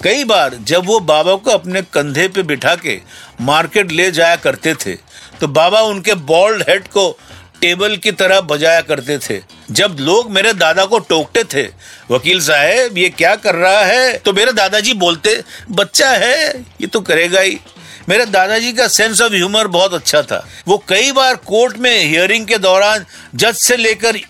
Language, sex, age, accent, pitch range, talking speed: Hindi, male, 50-69, native, 155-215 Hz, 180 wpm